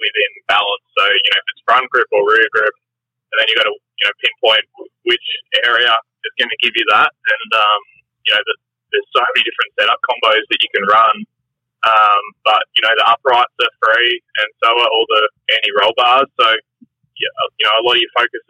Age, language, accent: 20-39, English, Australian